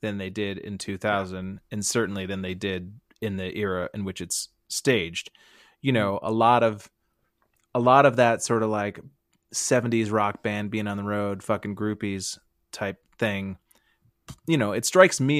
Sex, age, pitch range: male, 30-49, 100-115 Hz